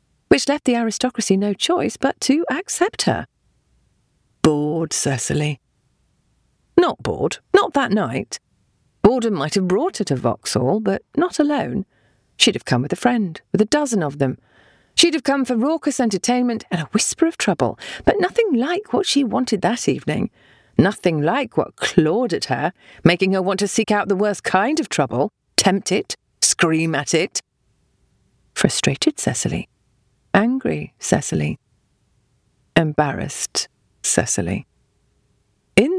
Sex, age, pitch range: female, 40-59, 165-275 Hz